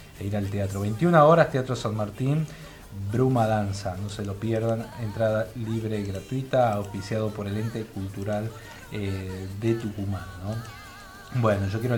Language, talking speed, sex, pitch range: Spanish, 150 wpm, male, 105-125 Hz